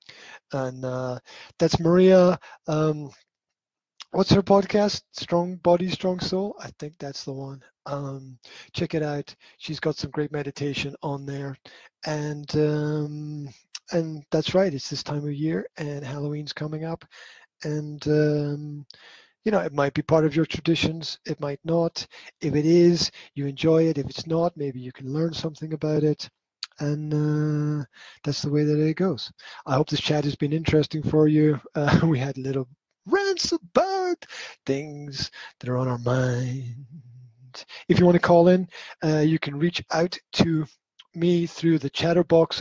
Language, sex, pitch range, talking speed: English, male, 140-165 Hz, 165 wpm